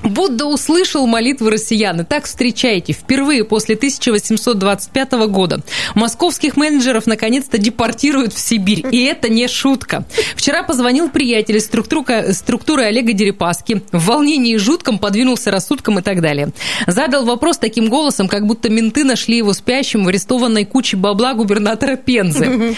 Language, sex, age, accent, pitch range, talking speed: Russian, female, 20-39, native, 215-285 Hz, 140 wpm